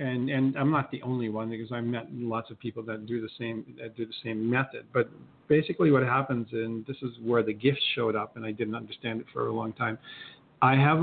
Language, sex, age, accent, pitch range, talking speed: English, male, 50-69, American, 115-130 Hz, 245 wpm